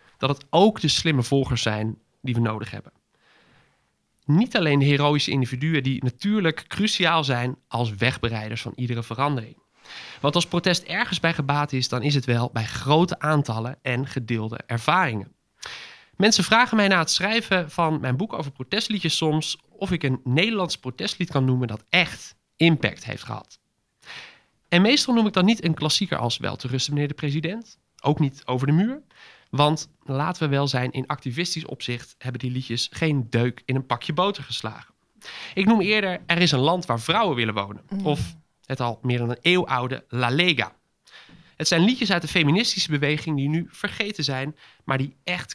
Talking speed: 180 wpm